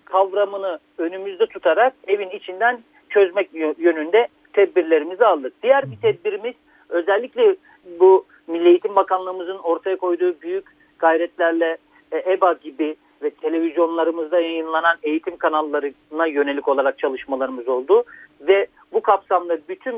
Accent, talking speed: native, 110 wpm